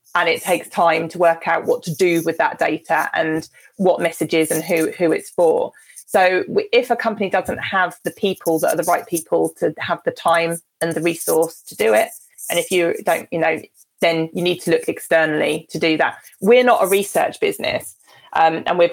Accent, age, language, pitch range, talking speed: British, 20-39, English, 160-185 Hz, 215 wpm